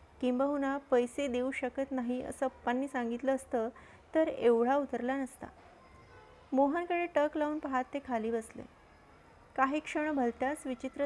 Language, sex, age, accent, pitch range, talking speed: Marathi, female, 30-49, native, 230-275 Hz, 105 wpm